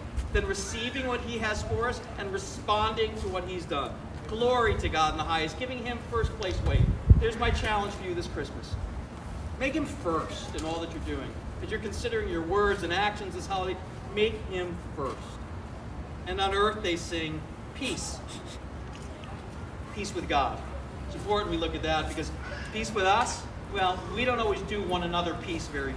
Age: 40-59